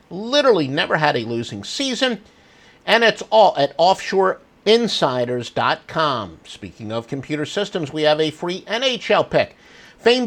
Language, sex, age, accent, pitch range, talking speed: English, male, 50-69, American, 150-215 Hz, 130 wpm